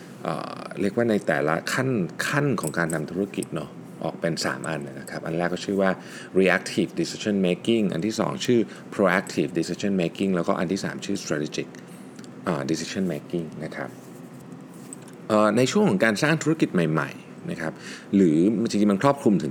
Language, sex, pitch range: Thai, male, 80-110 Hz